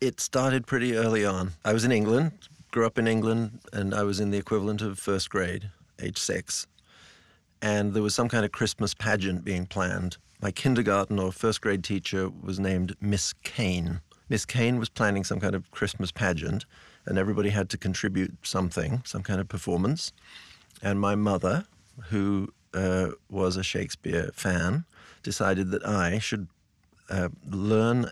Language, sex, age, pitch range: English, male, 50-69, 90-110 Hz